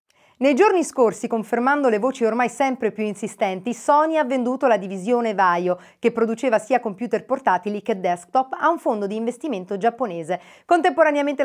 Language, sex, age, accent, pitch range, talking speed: Italian, female, 40-59, native, 195-250 Hz, 155 wpm